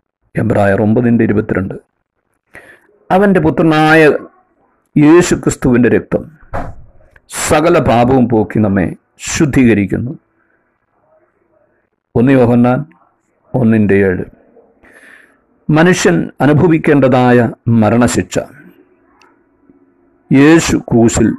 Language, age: Malayalam, 50-69